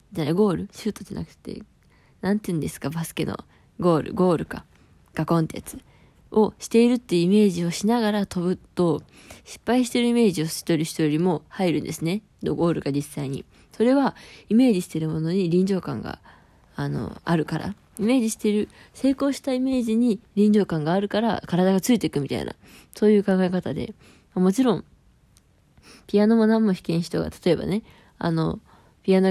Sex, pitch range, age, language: female, 170-220 Hz, 20-39, Japanese